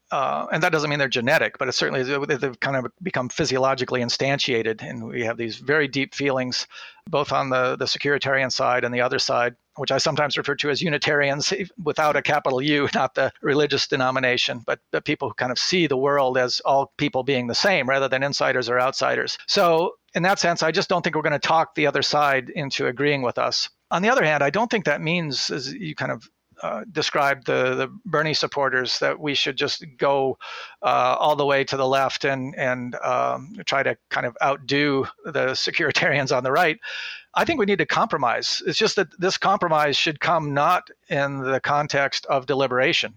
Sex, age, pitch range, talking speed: male, 40-59, 130-155 Hz, 210 wpm